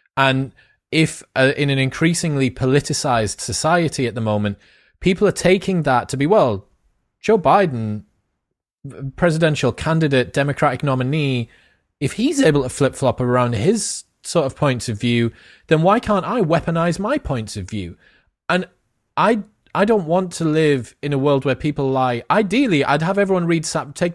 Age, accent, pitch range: 30-49, British, 130-180 Hz